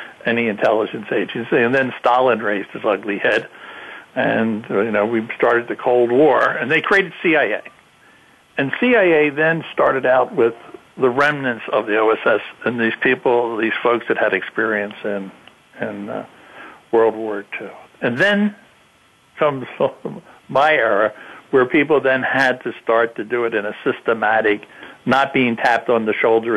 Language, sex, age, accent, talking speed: English, male, 60-79, American, 160 wpm